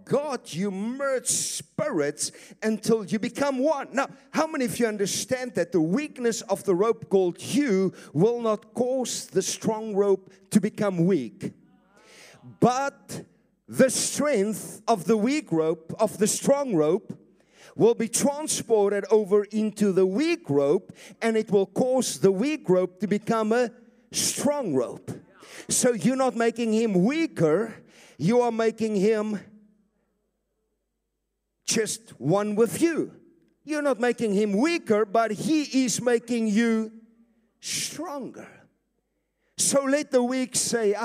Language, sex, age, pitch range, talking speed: English, male, 50-69, 190-240 Hz, 135 wpm